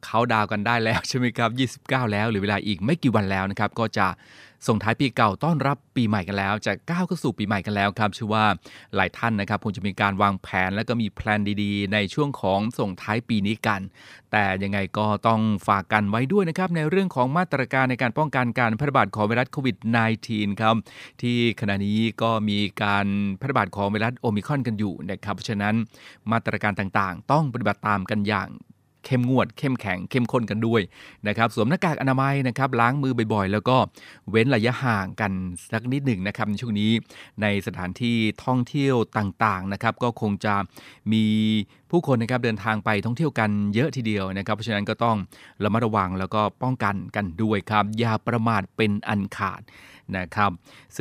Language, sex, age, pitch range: Thai, male, 20-39, 100-125 Hz